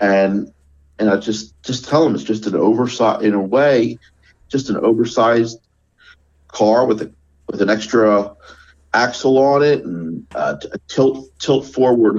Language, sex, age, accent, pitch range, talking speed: English, male, 50-69, American, 75-115 Hz, 145 wpm